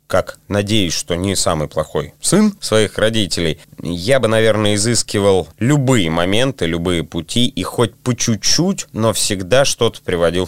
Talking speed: 145 wpm